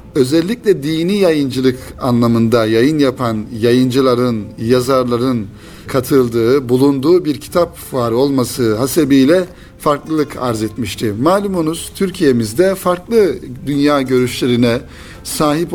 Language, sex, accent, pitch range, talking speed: Turkish, male, native, 120-160 Hz, 90 wpm